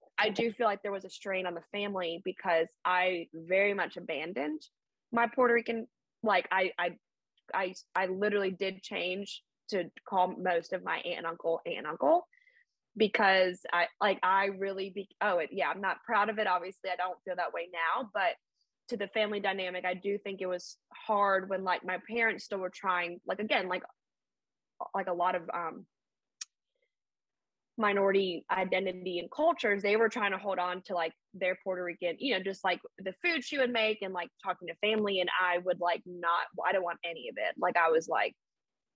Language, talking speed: English, 200 wpm